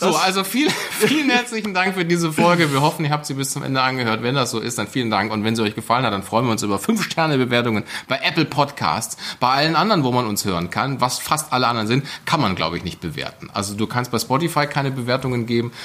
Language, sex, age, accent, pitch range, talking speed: German, male, 30-49, German, 110-150 Hz, 260 wpm